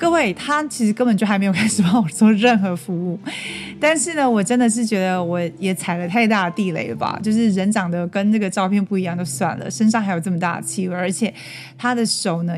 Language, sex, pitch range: Chinese, female, 175-230 Hz